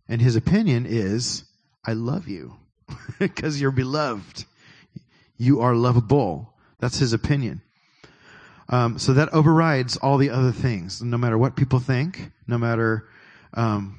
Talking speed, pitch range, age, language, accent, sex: 135 wpm, 115-135 Hz, 30-49, English, American, male